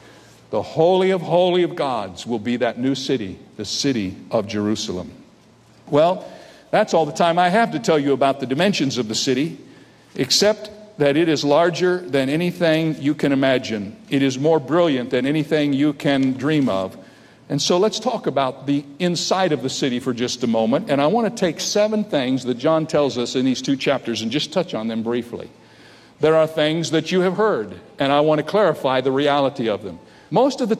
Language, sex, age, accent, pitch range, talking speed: English, male, 50-69, American, 135-185 Hz, 205 wpm